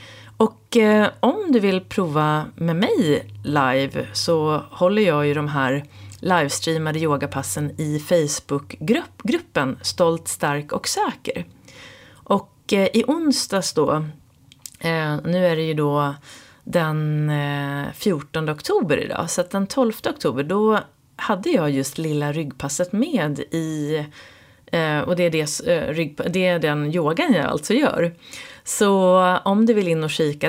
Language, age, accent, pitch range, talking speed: Swedish, 30-49, native, 150-195 Hz, 140 wpm